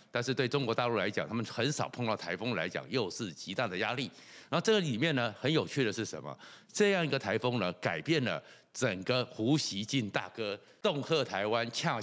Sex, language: male, Chinese